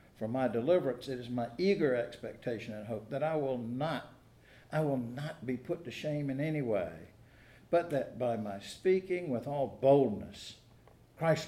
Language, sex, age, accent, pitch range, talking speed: English, male, 60-79, American, 110-140 Hz, 160 wpm